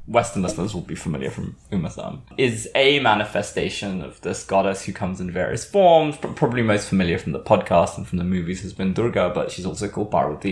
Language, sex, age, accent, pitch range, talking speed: English, male, 20-39, British, 90-135 Hz, 205 wpm